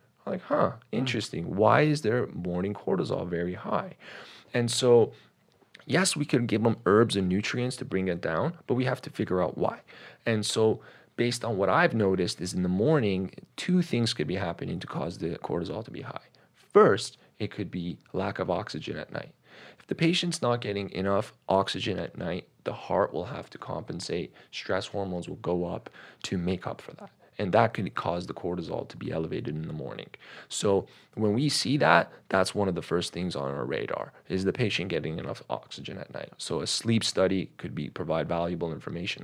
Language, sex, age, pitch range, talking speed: English, male, 30-49, 90-120 Hz, 200 wpm